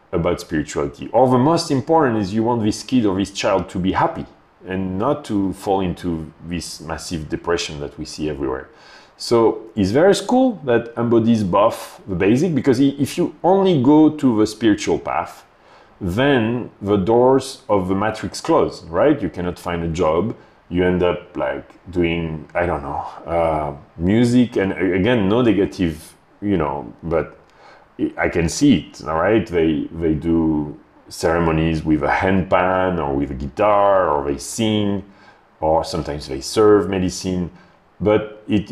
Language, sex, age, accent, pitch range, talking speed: English, male, 30-49, French, 85-115 Hz, 165 wpm